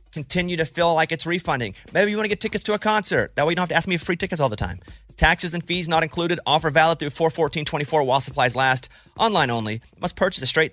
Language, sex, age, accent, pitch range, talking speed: English, male, 30-49, American, 125-165 Hz, 270 wpm